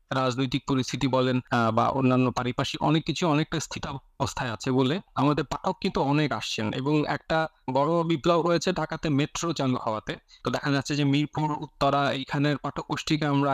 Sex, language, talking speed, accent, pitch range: male, Bengali, 45 wpm, native, 135-170 Hz